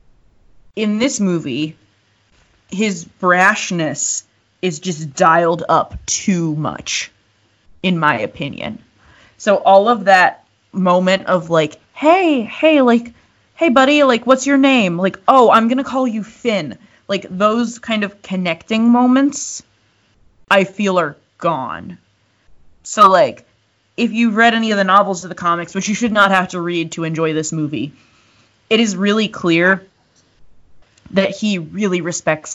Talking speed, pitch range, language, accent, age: 145 wpm, 155-205 Hz, English, American, 20-39